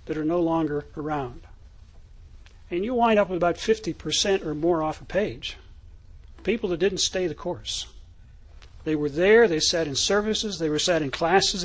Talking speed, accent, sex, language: 180 wpm, American, male, English